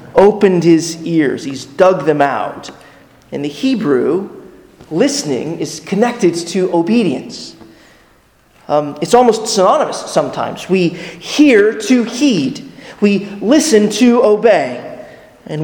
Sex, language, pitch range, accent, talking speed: male, English, 160-205 Hz, American, 110 wpm